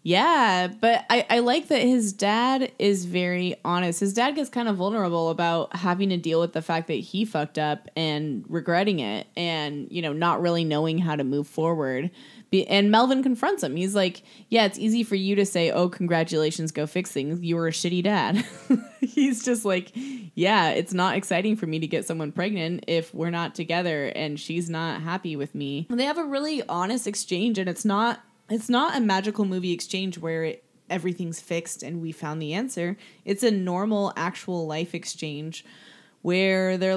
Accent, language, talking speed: American, English, 190 wpm